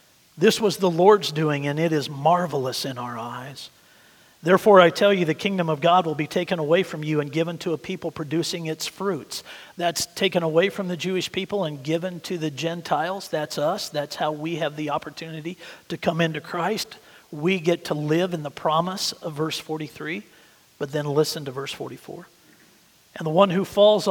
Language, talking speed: English, 195 wpm